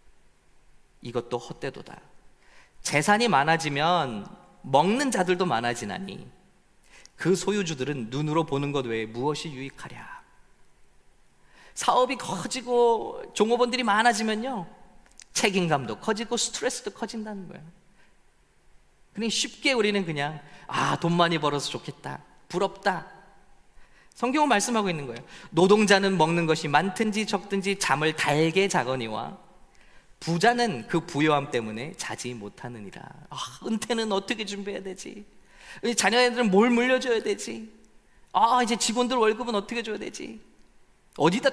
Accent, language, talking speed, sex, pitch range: Korean, English, 100 wpm, male, 145-230 Hz